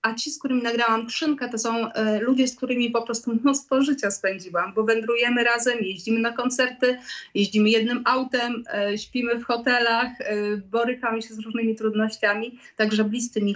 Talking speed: 155 wpm